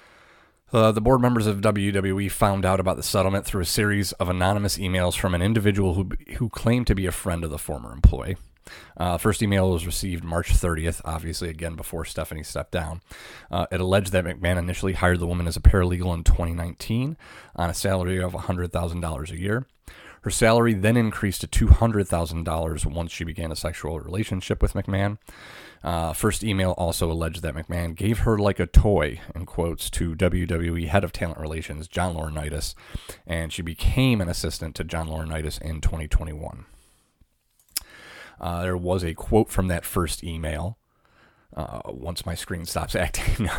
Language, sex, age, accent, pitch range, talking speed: English, male, 30-49, American, 85-100 Hz, 175 wpm